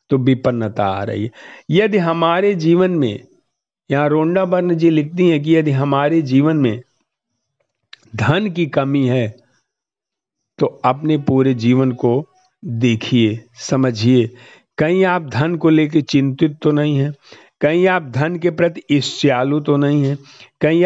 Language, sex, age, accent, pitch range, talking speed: Hindi, male, 50-69, native, 135-175 Hz, 145 wpm